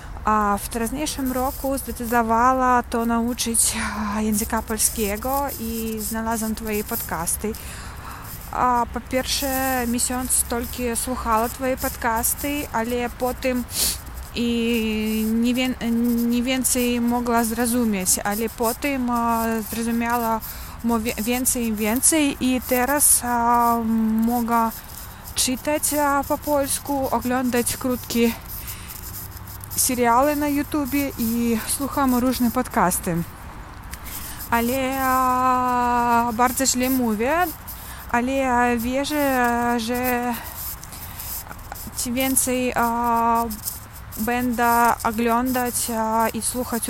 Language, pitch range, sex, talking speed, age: English, 230-255 Hz, female, 80 wpm, 20-39